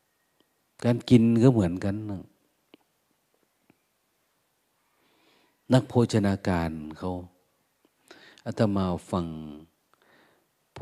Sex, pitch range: male, 85-105 Hz